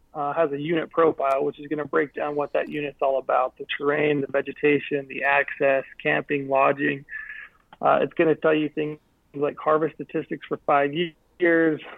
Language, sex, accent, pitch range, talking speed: English, male, American, 145-160 Hz, 185 wpm